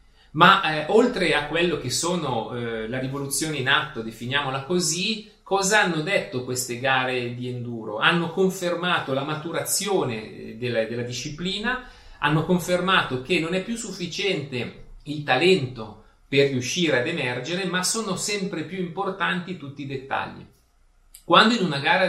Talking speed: 145 wpm